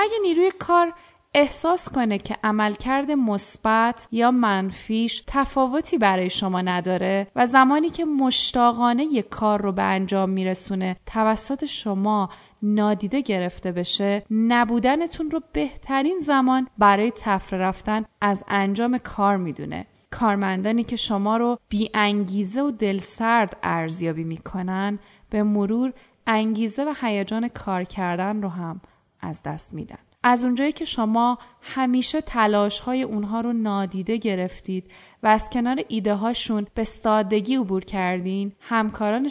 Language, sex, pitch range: Persian, female, 195-250 Hz